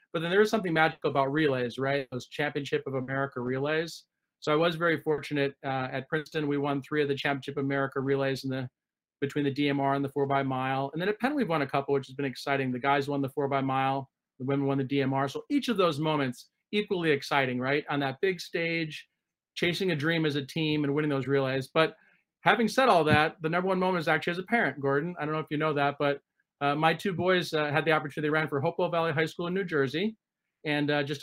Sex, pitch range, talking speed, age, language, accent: male, 140-165 Hz, 250 wpm, 40-59, English, American